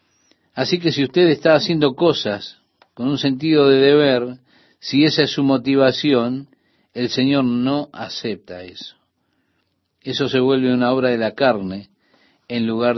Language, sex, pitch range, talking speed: Spanish, male, 110-140 Hz, 150 wpm